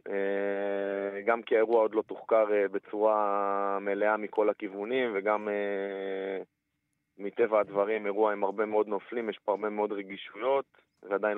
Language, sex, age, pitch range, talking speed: Hebrew, male, 20-39, 95-115 Hz, 140 wpm